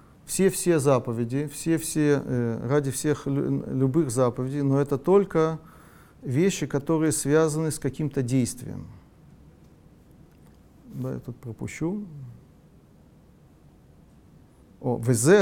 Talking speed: 90 wpm